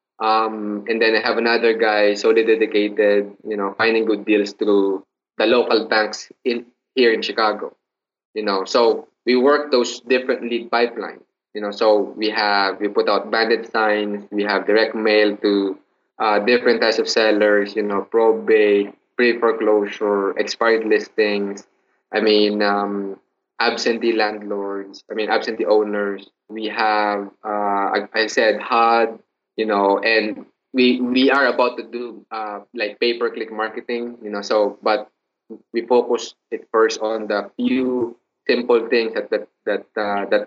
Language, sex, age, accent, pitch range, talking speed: English, male, 20-39, Filipino, 105-125 Hz, 155 wpm